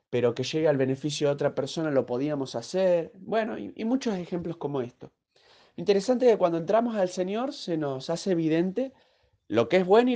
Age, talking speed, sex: 30-49, 195 wpm, male